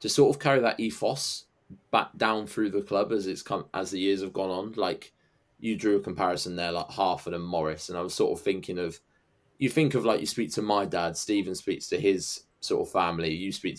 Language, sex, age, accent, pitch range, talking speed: English, male, 20-39, British, 90-110 Hz, 240 wpm